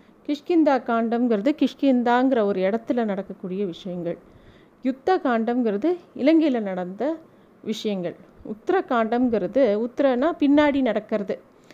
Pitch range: 205-260 Hz